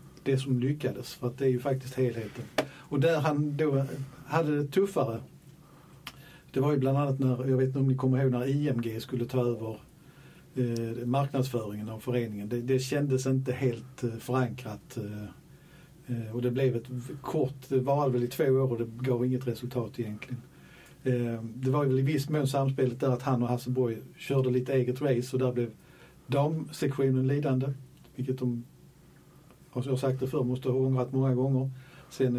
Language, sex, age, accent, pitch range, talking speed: Swedish, male, 50-69, native, 125-140 Hz, 180 wpm